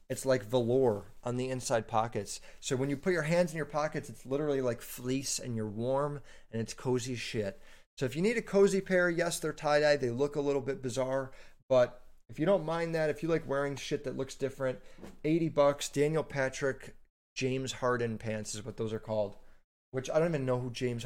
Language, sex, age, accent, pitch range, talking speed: English, male, 30-49, American, 120-140 Hz, 215 wpm